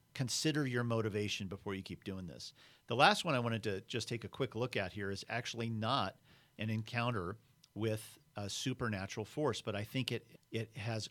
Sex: male